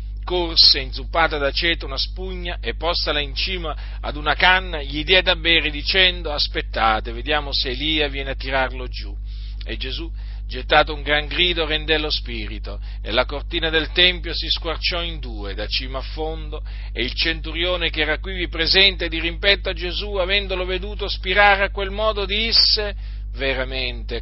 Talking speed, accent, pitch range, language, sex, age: 165 wpm, native, 115-170 Hz, Italian, male, 40-59